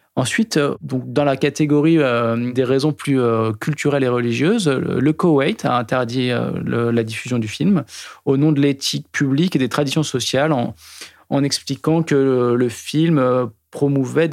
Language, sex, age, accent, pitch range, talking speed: French, male, 20-39, French, 125-150 Hz, 140 wpm